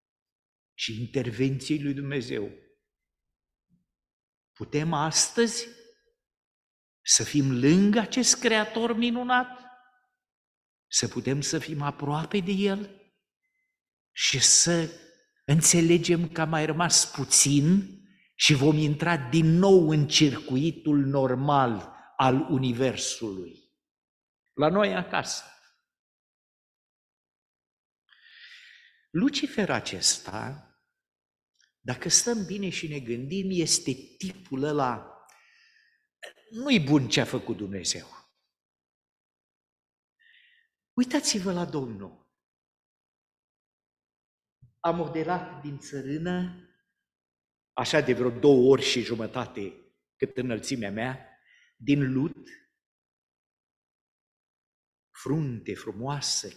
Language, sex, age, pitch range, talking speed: Romanian, male, 50-69, 120-190 Hz, 80 wpm